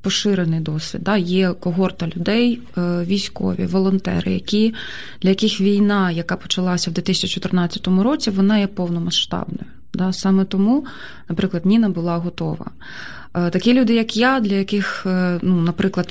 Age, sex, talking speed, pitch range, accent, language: 20-39, female, 130 wpm, 180-205 Hz, native, Ukrainian